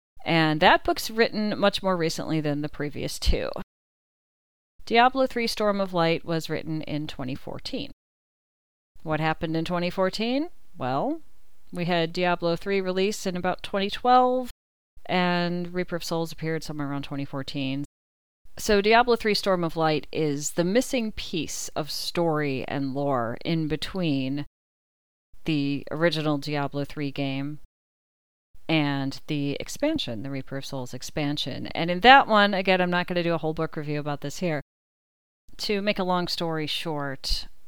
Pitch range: 140-180 Hz